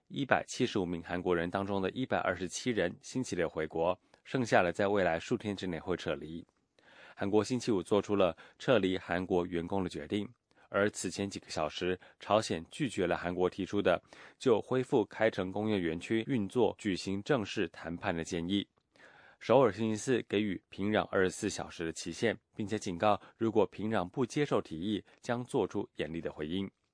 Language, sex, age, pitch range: English, male, 20-39, 90-110 Hz